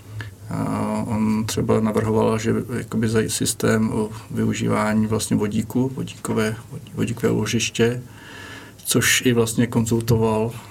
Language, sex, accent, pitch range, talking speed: Czech, male, native, 110-125 Hz, 100 wpm